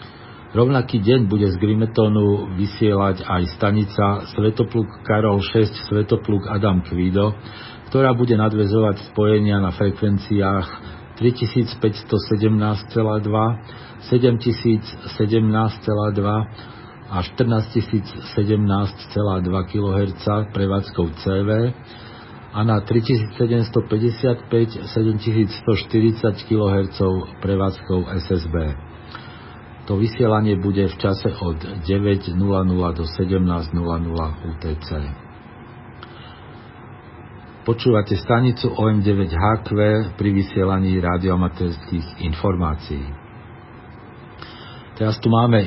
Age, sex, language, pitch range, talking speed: 50-69, male, Slovak, 100-115 Hz, 70 wpm